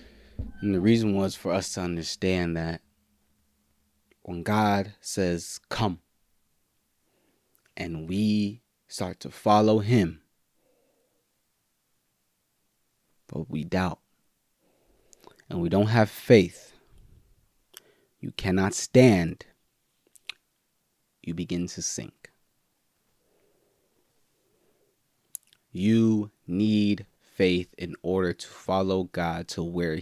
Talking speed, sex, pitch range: 90 wpm, male, 85-110 Hz